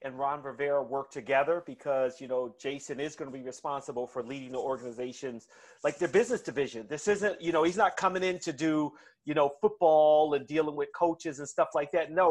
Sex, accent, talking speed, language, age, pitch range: male, American, 215 wpm, English, 30-49, 145-180 Hz